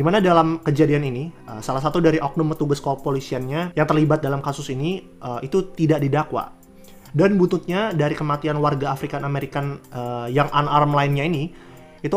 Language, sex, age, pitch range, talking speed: Indonesian, male, 20-39, 130-160 Hz, 155 wpm